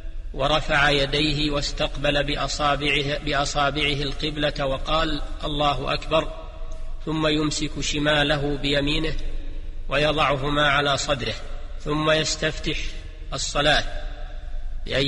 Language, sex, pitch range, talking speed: Arabic, male, 140-150 Hz, 80 wpm